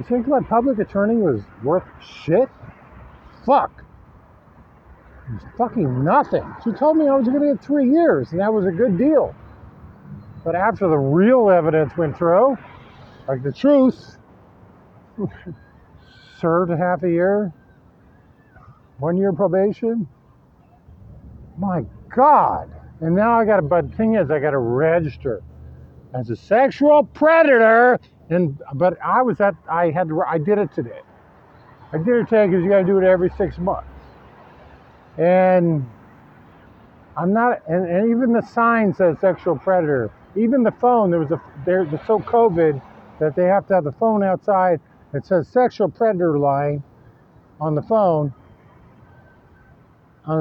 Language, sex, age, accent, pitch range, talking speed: English, male, 50-69, American, 140-210 Hz, 145 wpm